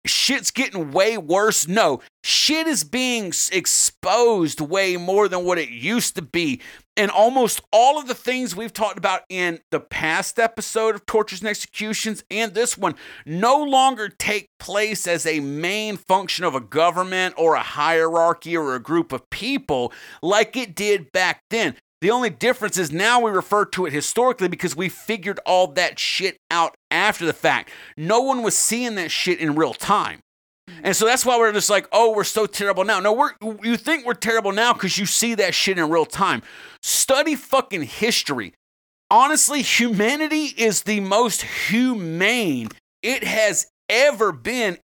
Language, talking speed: English, 175 wpm